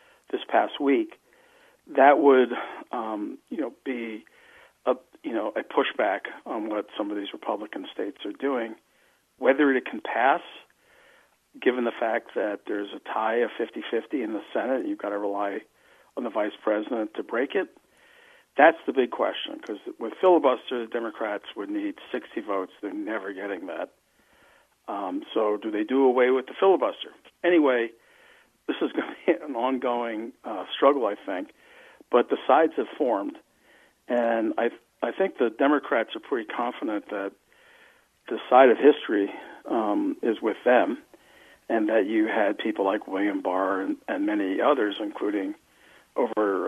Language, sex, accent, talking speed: English, male, American, 160 wpm